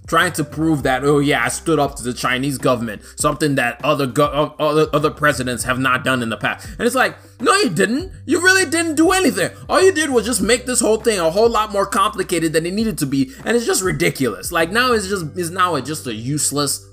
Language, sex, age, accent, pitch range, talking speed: English, male, 20-39, American, 130-185 Hz, 250 wpm